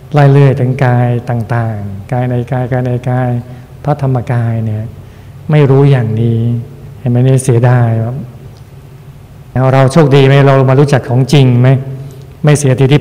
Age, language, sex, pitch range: 60-79, Thai, male, 125-145 Hz